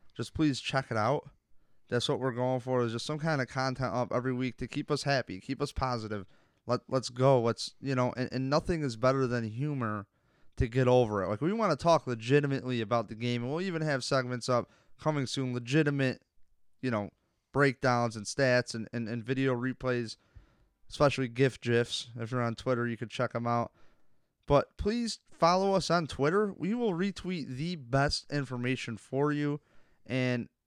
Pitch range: 115-140 Hz